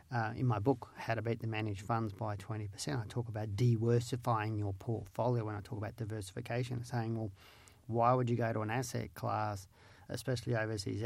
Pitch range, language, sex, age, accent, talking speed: 105-120 Hz, English, male, 40-59, Australian, 190 wpm